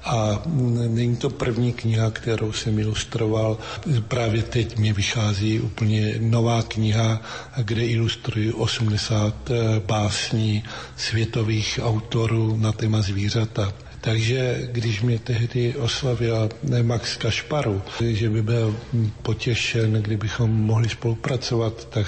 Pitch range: 110-125 Hz